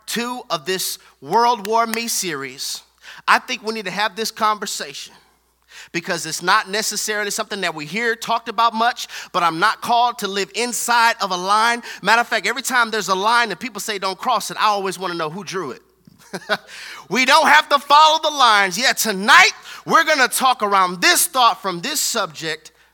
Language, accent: English, American